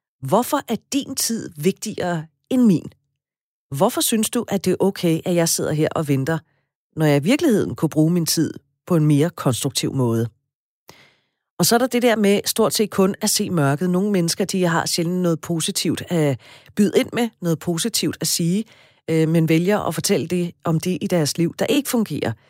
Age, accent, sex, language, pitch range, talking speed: 40-59, native, female, Danish, 150-195 Hz, 195 wpm